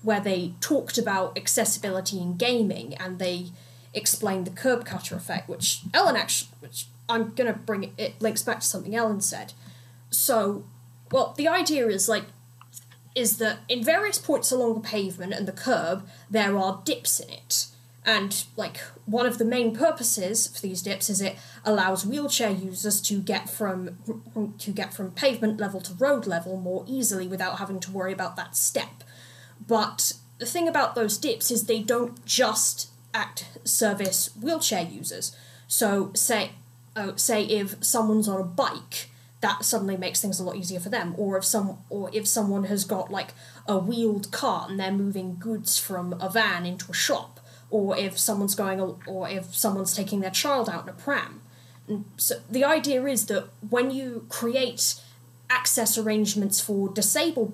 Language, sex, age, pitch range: English, female, 10-29, 185-225 Hz